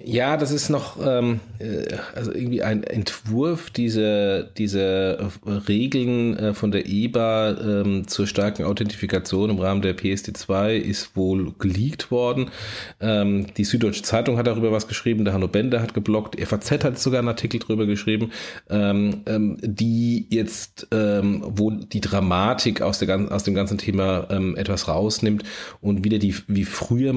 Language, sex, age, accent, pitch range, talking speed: German, male, 30-49, German, 95-110 Hz, 155 wpm